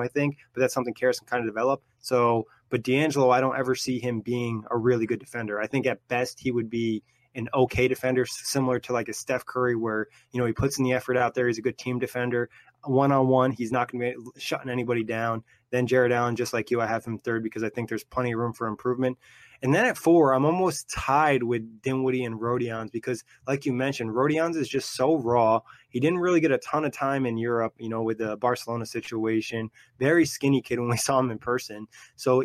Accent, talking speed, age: American, 235 wpm, 20-39